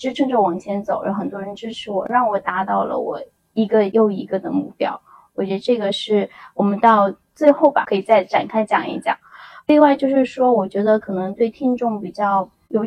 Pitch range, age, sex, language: 205-245 Hz, 10-29, female, Chinese